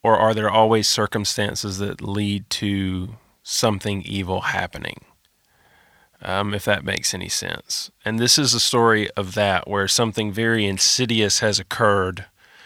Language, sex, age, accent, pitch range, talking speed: English, male, 30-49, American, 100-110 Hz, 140 wpm